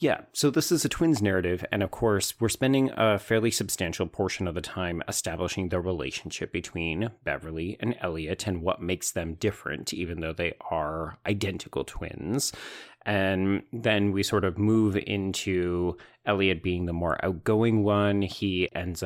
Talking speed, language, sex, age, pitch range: 165 wpm, English, male, 30-49, 85-110 Hz